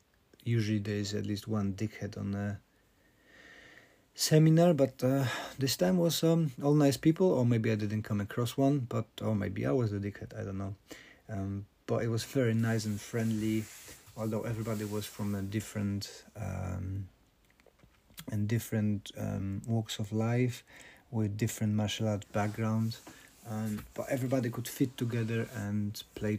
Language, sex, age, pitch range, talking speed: English, male, 40-59, 100-115 Hz, 155 wpm